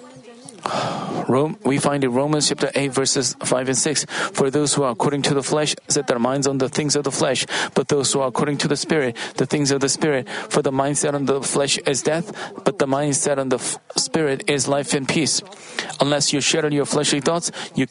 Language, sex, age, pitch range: Korean, male, 40-59, 135-155 Hz